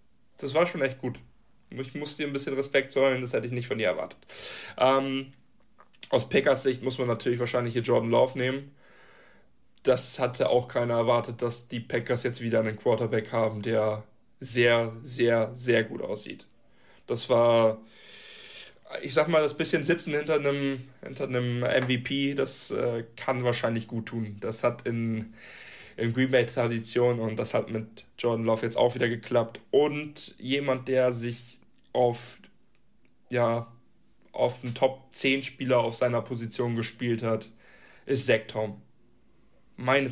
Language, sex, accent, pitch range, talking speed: German, male, German, 115-135 Hz, 155 wpm